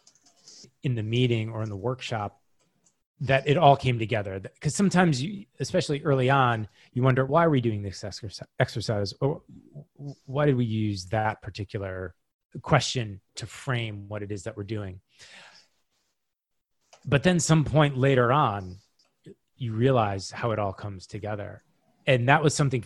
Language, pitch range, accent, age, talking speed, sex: English, 100-130 Hz, American, 30-49, 155 wpm, male